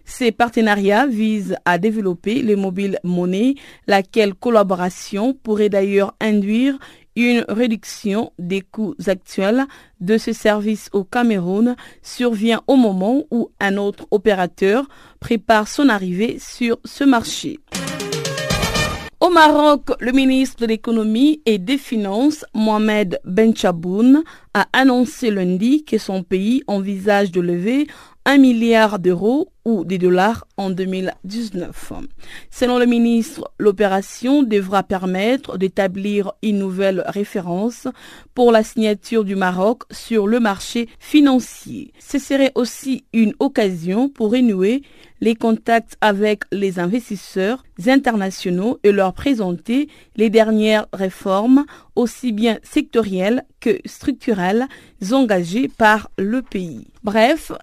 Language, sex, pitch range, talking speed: French, female, 200-245 Hz, 115 wpm